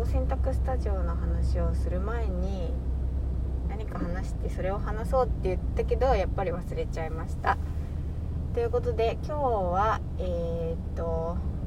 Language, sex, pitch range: Japanese, female, 65-85 Hz